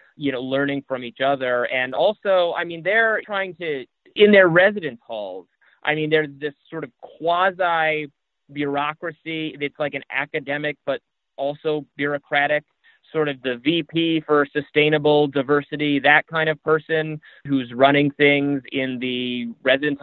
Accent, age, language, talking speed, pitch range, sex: American, 30-49, English, 145 wpm, 130-155 Hz, male